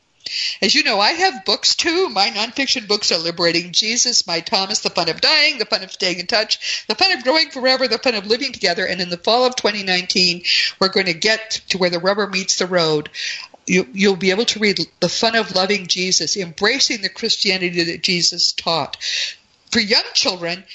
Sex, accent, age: female, American, 50-69